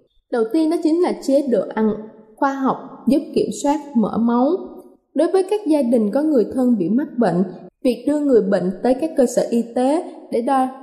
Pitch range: 215-280 Hz